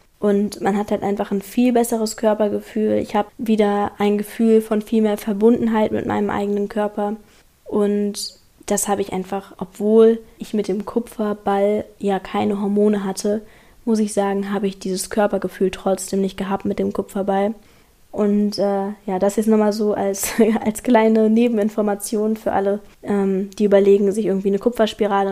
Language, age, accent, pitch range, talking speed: German, 10-29, German, 200-220 Hz, 165 wpm